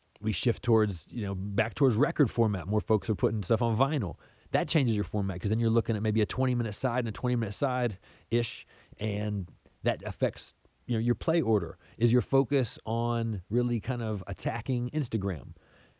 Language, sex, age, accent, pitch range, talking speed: English, male, 30-49, American, 100-125 Hz, 200 wpm